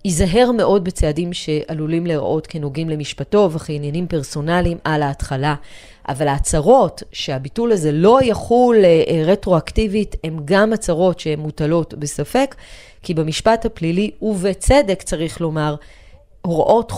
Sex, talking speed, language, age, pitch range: female, 110 wpm, Hebrew, 30-49, 160-230 Hz